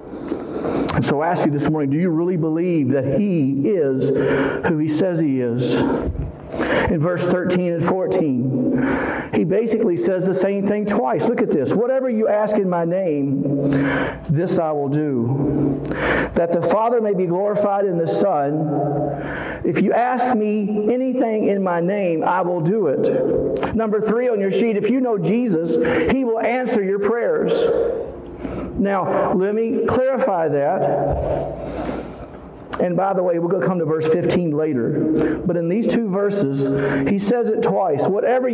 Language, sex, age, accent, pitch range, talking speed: English, male, 50-69, American, 170-245 Hz, 165 wpm